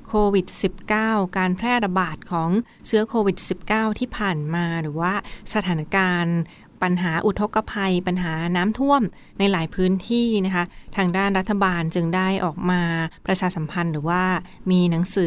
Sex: female